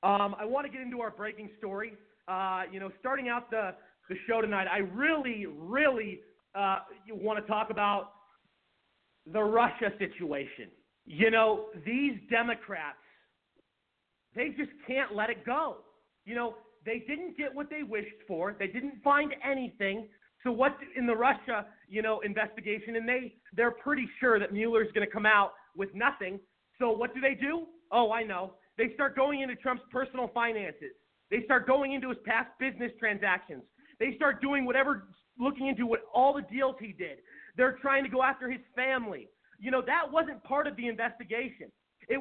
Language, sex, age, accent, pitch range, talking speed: English, male, 30-49, American, 215-270 Hz, 175 wpm